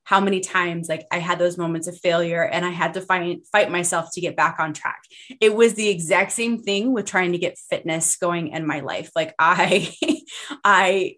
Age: 20-39